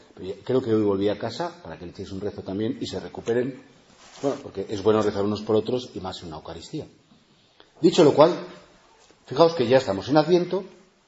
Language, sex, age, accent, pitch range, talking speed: Spanish, male, 40-59, Spanish, 115-165 Hz, 205 wpm